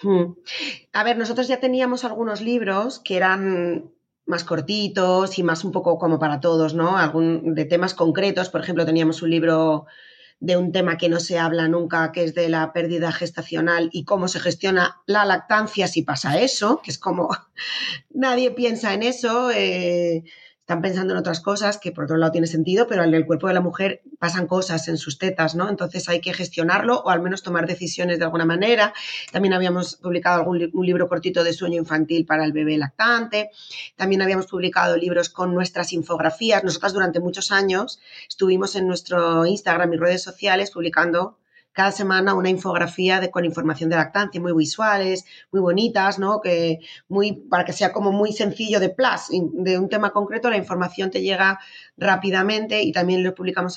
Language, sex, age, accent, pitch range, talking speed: Spanish, female, 30-49, Spanish, 170-200 Hz, 185 wpm